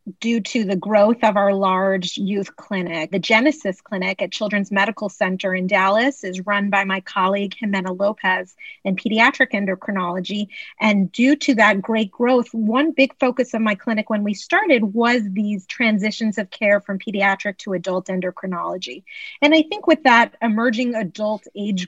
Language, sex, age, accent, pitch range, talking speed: English, female, 30-49, American, 195-240 Hz, 165 wpm